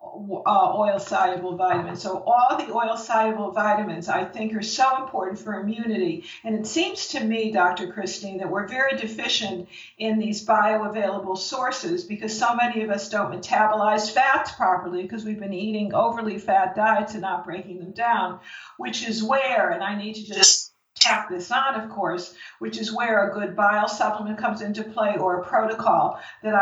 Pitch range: 190-225 Hz